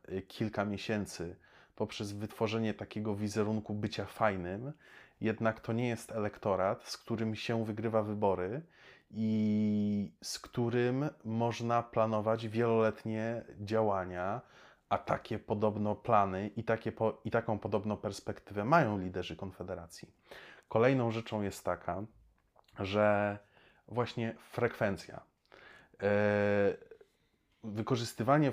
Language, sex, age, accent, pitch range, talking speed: Polish, male, 30-49, native, 105-115 Hz, 95 wpm